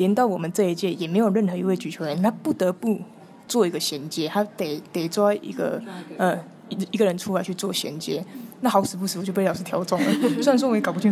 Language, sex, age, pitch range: Chinese, female, 20-39, 180-215 Hz